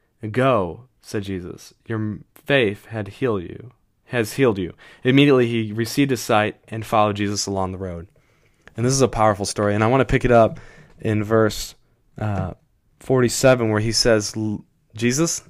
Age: 20-39